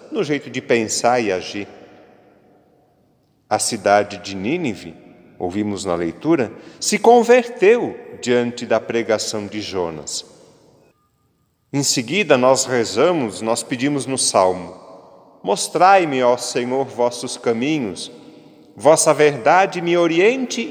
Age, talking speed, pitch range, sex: 40-59, 105 wpm, 110-180 Hz, male